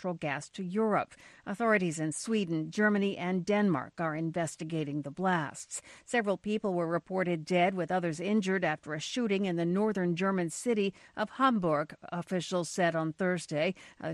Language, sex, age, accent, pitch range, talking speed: English, female, 50-69, American, 160-195 Hz, 155 wpm